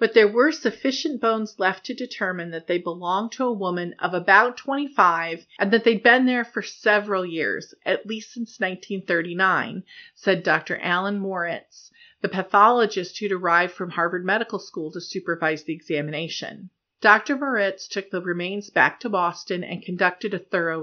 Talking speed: 165 wpm